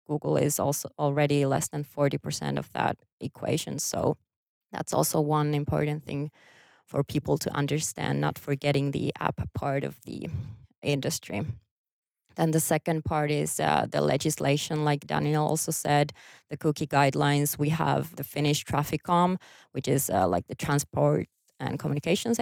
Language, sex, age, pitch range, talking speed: Swedish, female, 20-39, 145-160 Hz, 150 wpm